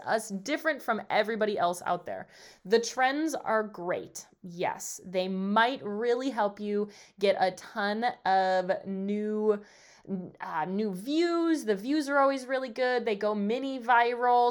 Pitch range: 190-225 Hz